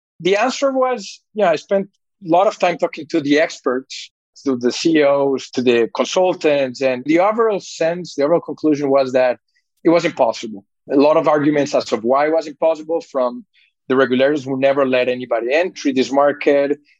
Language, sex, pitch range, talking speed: English, male, 130-165 Hz, 185 wpm